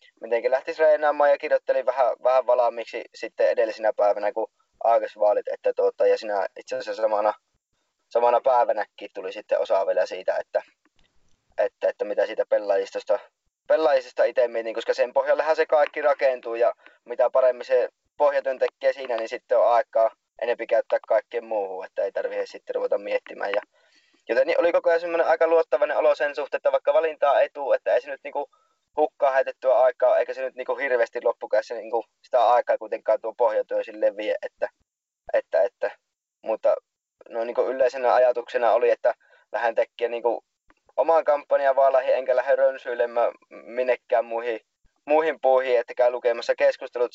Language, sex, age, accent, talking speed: Finnish, male, 20-39, native, 165 wpm